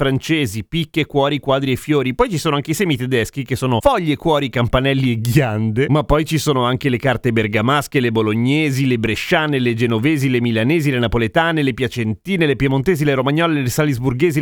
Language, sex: Italian, male